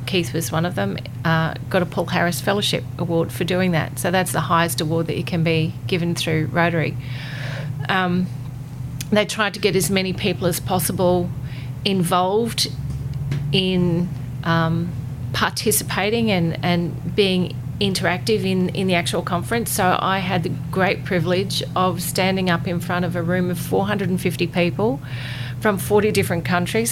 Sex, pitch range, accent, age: female, 130-180 Hz, Australian, 40-59